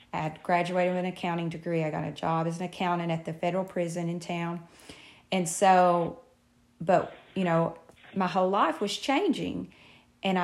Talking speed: 170 wpm